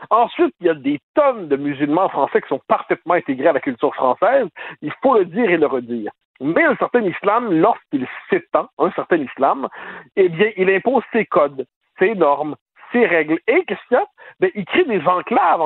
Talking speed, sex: 205 wpm, male